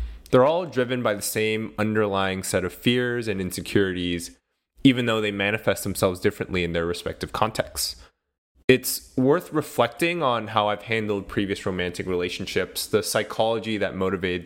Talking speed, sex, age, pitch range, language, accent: 150 wpm, male, 20-39, 90-115 Hz, English, American